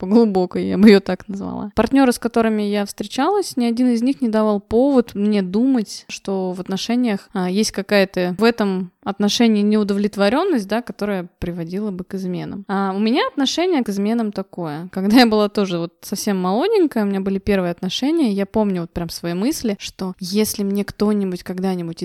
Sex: female